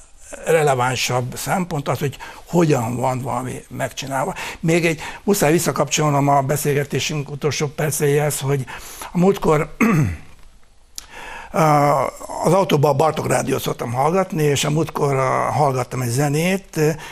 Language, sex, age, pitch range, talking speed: Hungarian, male, 60-79, 135-155 Hz, 110 wpm